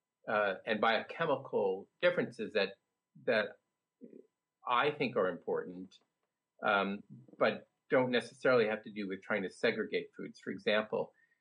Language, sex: English, male